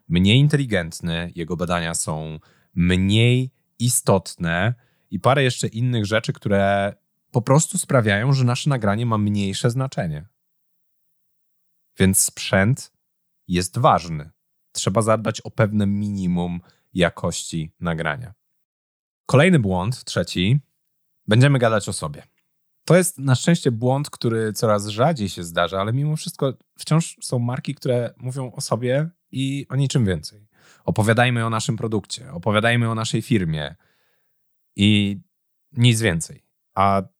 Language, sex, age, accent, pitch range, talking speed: Polish, male, 30-49, native, 95-145 Hz, 125 wpm